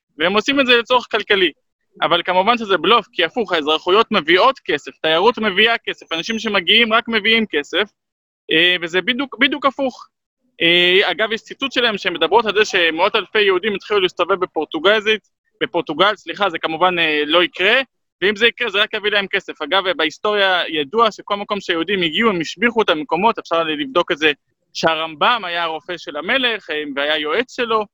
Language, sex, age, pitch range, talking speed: Hebrew, male, 20-39, 175-245 Hz, 150 wpm